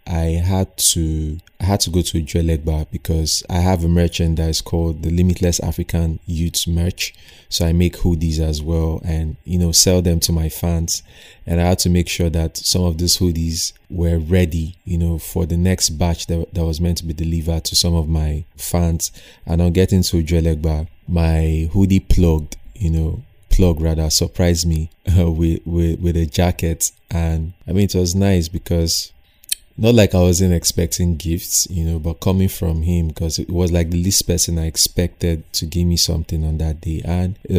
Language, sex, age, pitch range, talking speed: English, male, 30-49, 80-90 Hz, 200 wpm